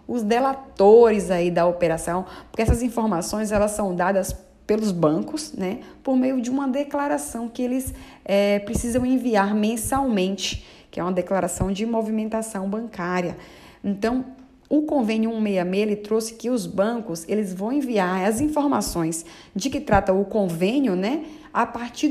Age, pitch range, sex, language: 20-39, 200-260 Hz, female, Portuguese